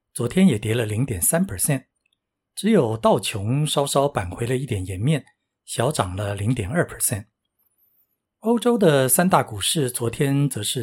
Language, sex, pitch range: Chinese, male, 115-160 Hz